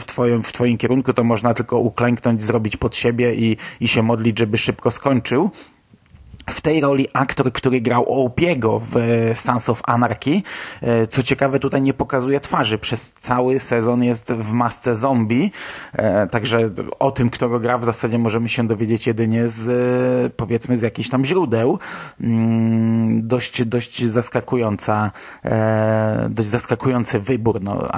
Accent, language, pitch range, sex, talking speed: native, Polish, 115-130 Hz, male, 140 wpm